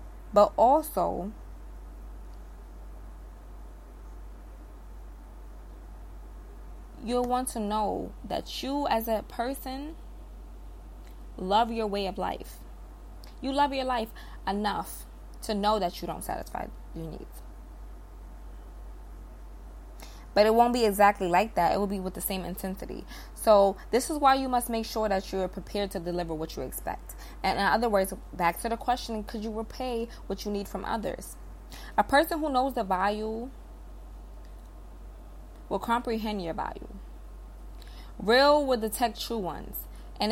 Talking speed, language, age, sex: 135 wpm, English, 20-39, female